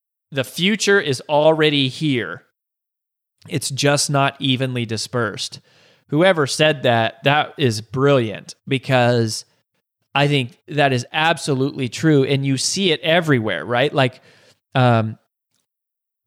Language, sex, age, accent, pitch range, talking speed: English, male, 20-39, American, 125-145 Hz, 115 wpm